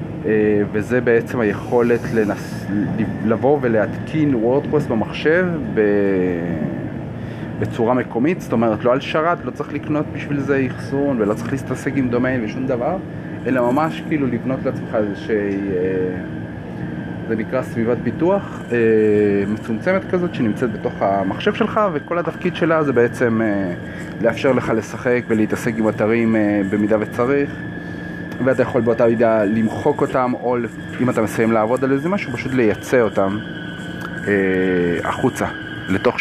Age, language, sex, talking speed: 30-49, Hebrew, male, 140 wpm